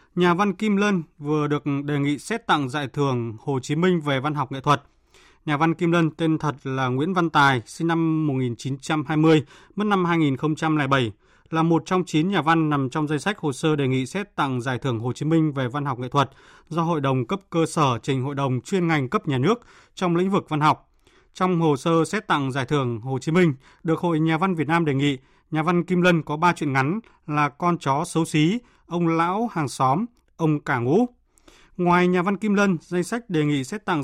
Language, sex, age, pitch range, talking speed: Vietnamese, male, 20-39, 140-175 Hz, 230 wpm